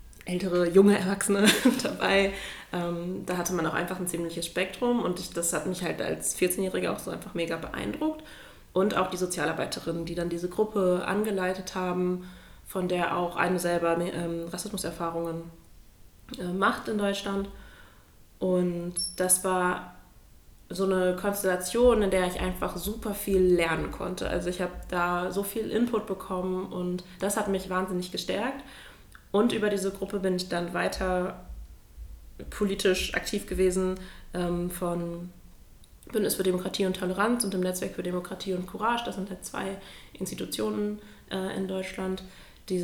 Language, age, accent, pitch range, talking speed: German, 20-39, German, 175-195 Hz, 145 wpm